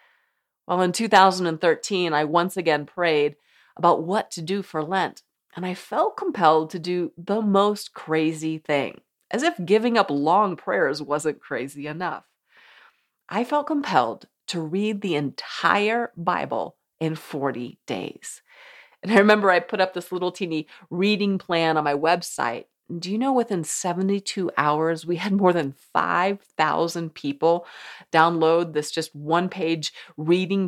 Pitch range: 160-205 Hz